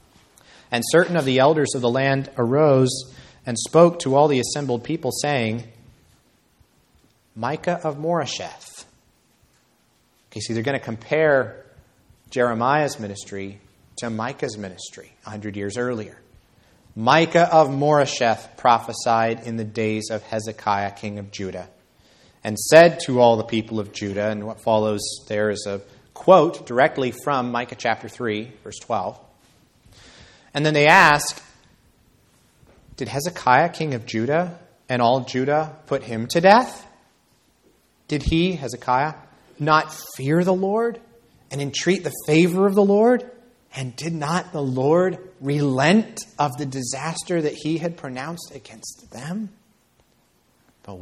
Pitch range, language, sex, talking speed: 110-155 Hz, English, male, 135 wpm